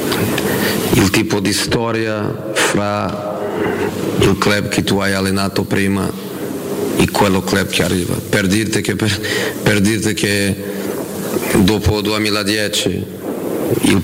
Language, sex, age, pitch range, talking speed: Italian, male, 40-59, 100-105 Hz, 105 wpm